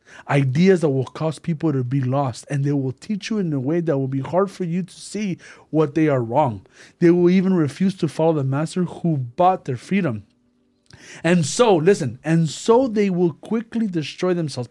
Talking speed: 205 wpm